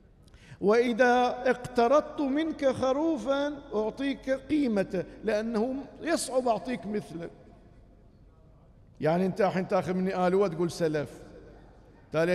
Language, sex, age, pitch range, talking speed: Arabic, male, 50-69, 195-255 Hz, 90 wpm